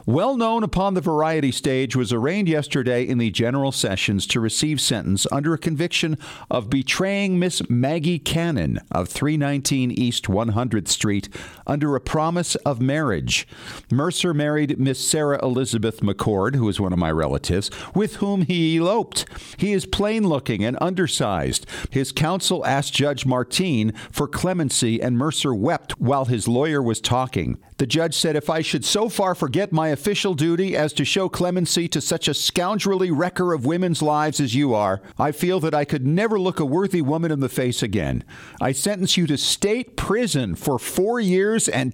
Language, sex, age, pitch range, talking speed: English, male, 50-69, 125-180 Hz, 170 wpm